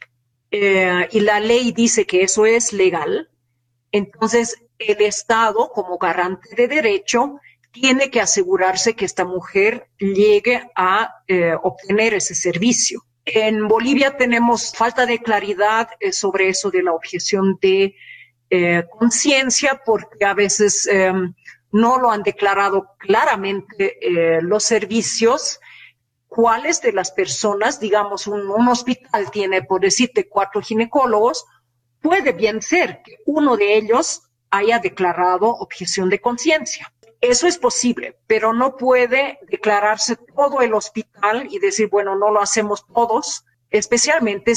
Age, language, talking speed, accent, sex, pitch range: 50-69, Spanish, 130 wpm, Mexican, female, 195-240 Hz